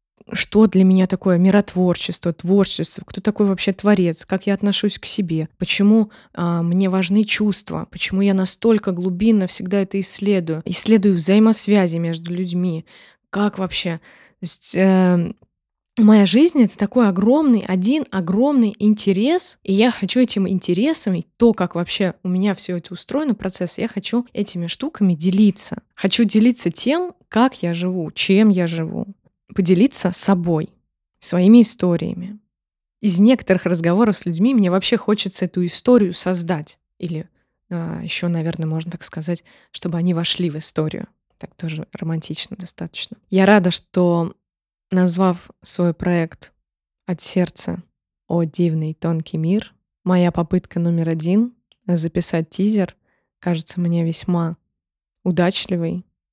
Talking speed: 130 wpm